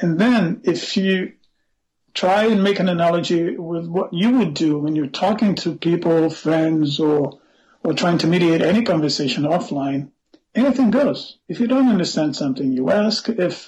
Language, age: English, 50-69